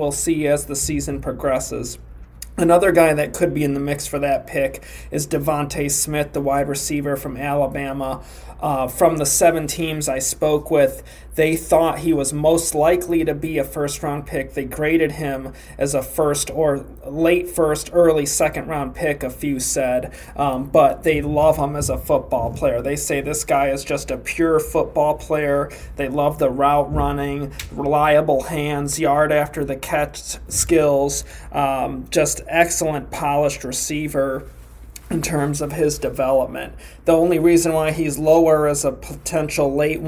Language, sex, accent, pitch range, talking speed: English, male, American, 140-155 Hz, 170 wpm